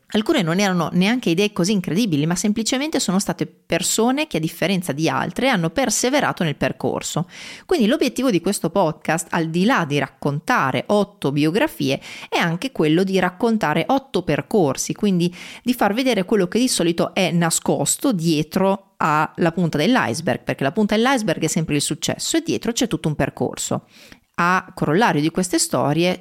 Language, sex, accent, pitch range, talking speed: Italian, female, native, 155-215 Hz, 165 wpm